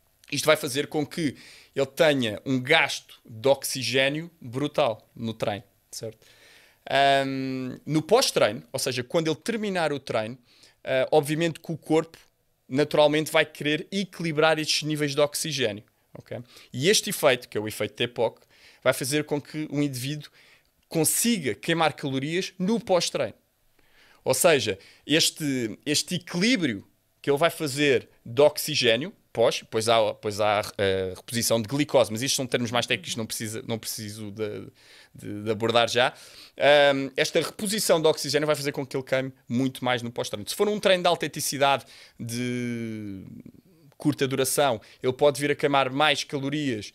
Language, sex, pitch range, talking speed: Portuguese, male, 120-155 Hz, 160 wpm